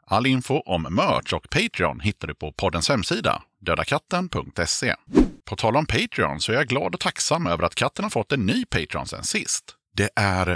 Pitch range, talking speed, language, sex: 80-110 Hz, 195 wpm, Swedish, male